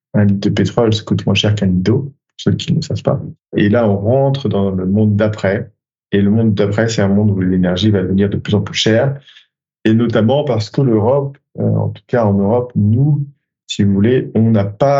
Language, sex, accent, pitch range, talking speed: French, male, French, 100-125 Hz, 225 wpm